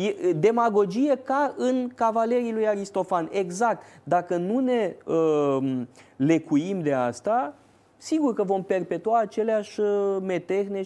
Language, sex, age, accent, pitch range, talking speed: Romanian, male, 30-49, native, 125-190 Hz, 105 wpm